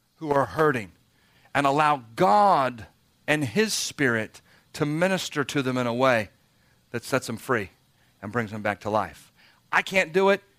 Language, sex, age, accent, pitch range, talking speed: English, male, 40-59, American, 120-190 Hz, 170 wpm